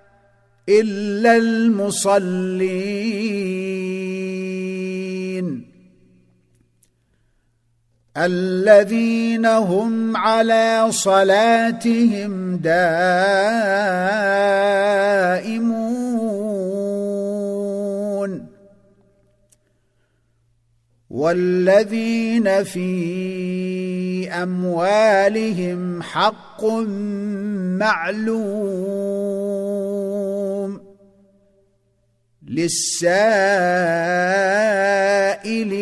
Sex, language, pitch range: male, Arabic, 180-210 Hz